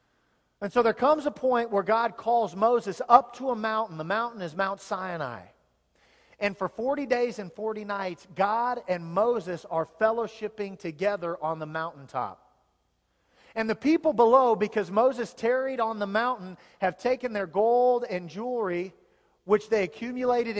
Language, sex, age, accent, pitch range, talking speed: English, male, 40-59, American, 180-235 Hz, 155 wpm